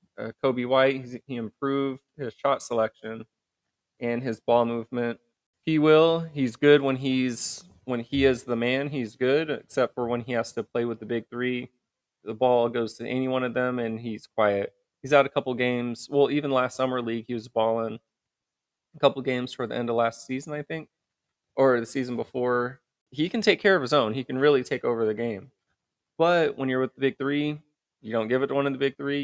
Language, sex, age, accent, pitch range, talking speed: English, male, 20-39, American, 115-135 Hz, 220 wpm